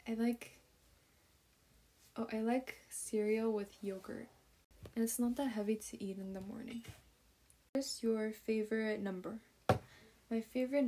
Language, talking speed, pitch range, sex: English, 140 wpm, 200-230 Hz, female